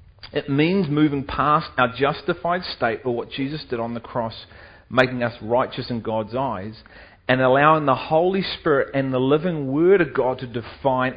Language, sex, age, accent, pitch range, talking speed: English, male, 40-59, Australian, 110-140 Hz, 175 wpm